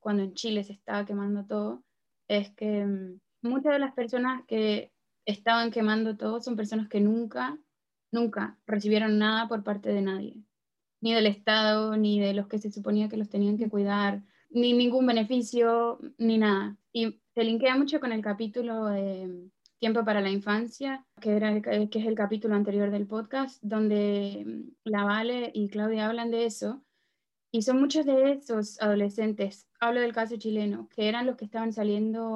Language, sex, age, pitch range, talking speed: Spanish, female, 20-39, 210-240 Hz, 170 wpm